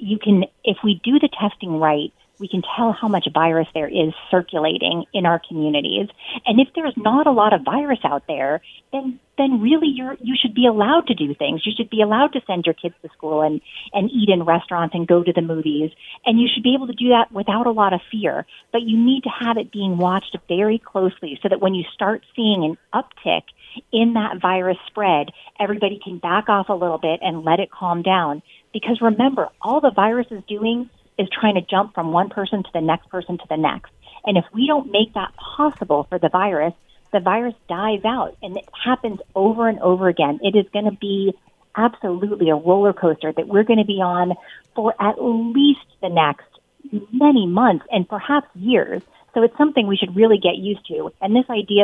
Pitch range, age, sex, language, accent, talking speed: 175-230 Hz, 40-59, female, English, American, 220 wpm